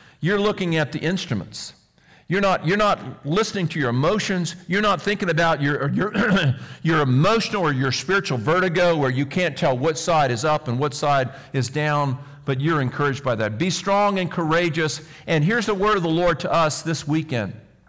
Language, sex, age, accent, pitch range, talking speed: English, male, 50-69, American, 145-210 Hz, 190 wpm